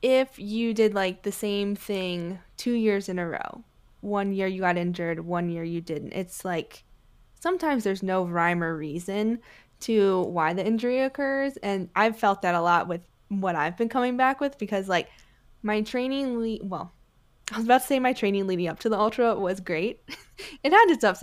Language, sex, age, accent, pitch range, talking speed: English, female, 10-29, American, 180-215 Hz, 200 wpm